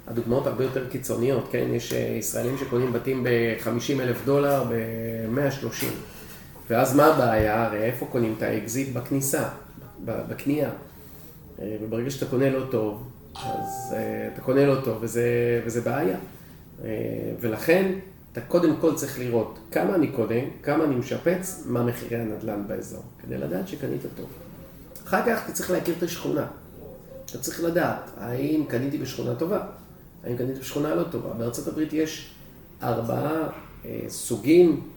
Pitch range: 115-160 Hz